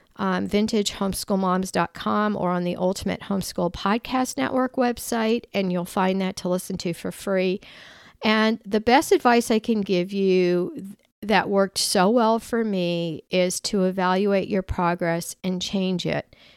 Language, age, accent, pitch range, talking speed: English, 50-69, American, 175-210 Hz, 150 wpm